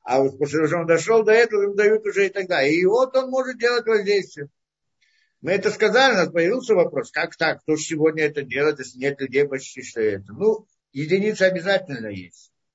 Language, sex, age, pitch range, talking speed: Russian, male, 50-69, 145-235 Hz, 205 wpm